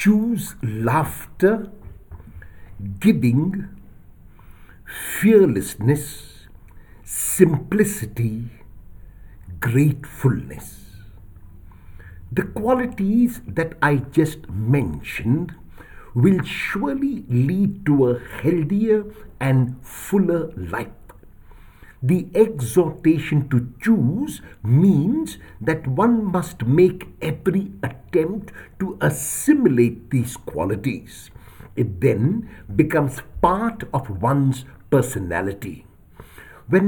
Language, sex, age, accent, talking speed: English, male, 60-79, Indian, 70 wpm